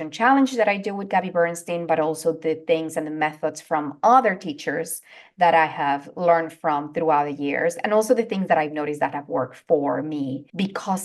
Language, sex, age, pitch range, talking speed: English, female, 30-49, 160-210 Hz, 210 wpm